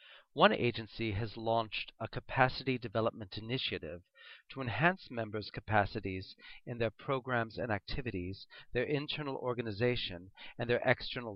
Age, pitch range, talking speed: 40-59, 110-135 Hz, 120 wpm